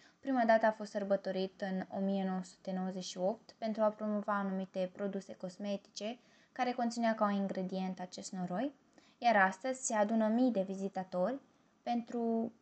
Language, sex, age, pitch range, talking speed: Romanian, female, 20-39, 190-235 Hz, 135 wpm